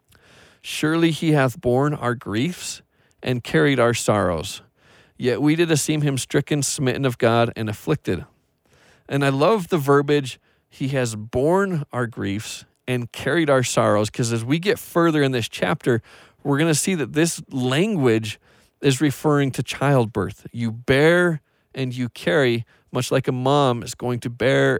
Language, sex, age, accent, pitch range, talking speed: English, male, 40-59, American, 120-155 Hz, 160 wpm